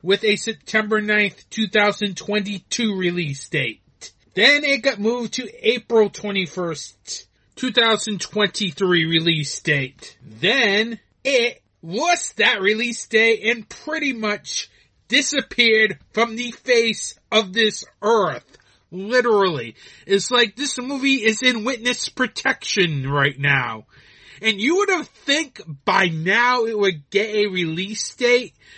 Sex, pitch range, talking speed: male, 185-245 Hz, 120 wpm